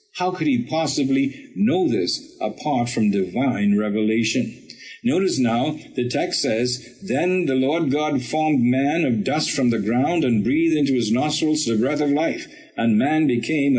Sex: male